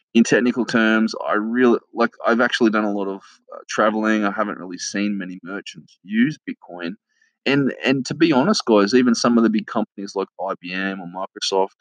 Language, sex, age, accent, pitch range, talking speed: English, male, 20-39, Australian, 95-120 Hz, 195 wpm